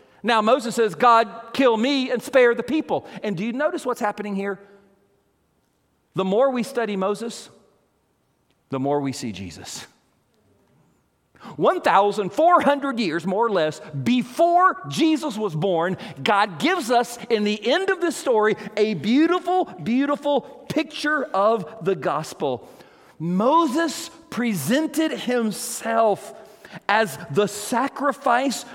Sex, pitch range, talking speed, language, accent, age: male, 195-275 Hz, 120 wpm, English, American, 40-59